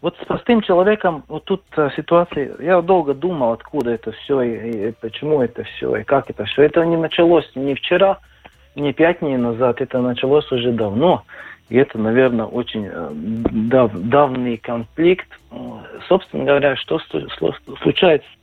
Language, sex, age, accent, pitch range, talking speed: Russian, male, 40-59, native, 120-170 Hz, 160 wpm